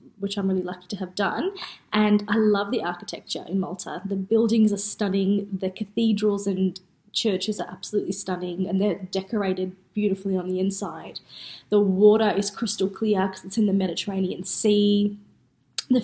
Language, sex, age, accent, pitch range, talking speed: English, female, 20-39, Australian, 195-220 Hz, 165 wpm